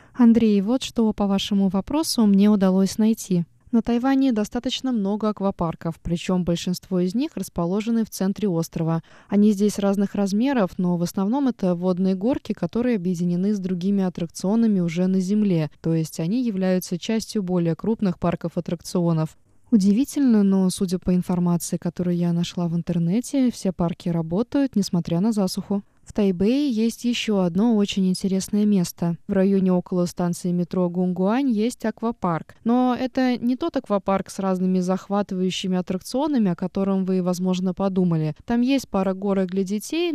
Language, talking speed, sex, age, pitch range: Russian, 150 wpm, female, 20-39, 180-225 Hz